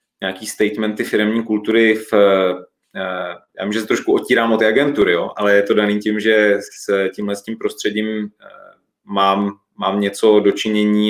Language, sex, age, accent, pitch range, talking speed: Czech, male, 30-49, native, 105-115 Hz, 155 wpm